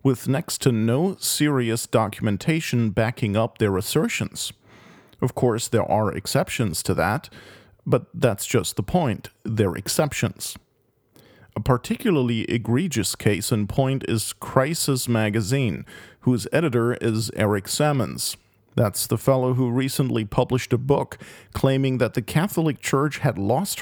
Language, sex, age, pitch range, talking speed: English, male, 40-59, 115-140 Hz, 135 wpm